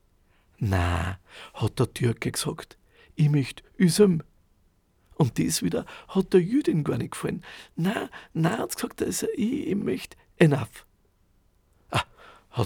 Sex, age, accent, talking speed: male, 50-69, Austrian, 135 wpm